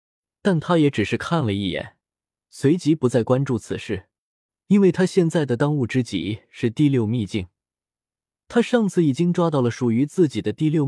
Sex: male